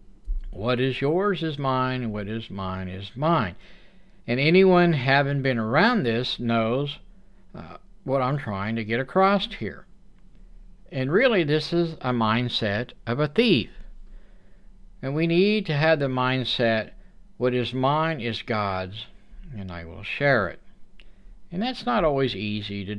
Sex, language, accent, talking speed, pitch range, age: male, English, American, 150 wpm, 110-170 Hz, 60-79